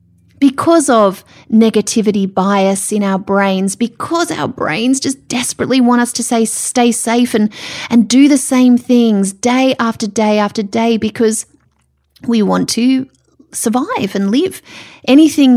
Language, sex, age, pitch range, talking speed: English, female, 30-49, 195-245 Hz, 145 wpm